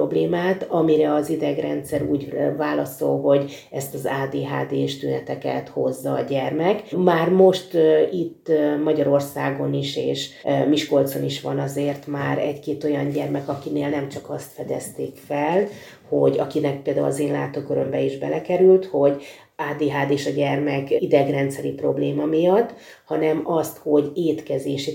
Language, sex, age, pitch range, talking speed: Hungarian, female, 30-49, 140-155 Hz, 130 wpm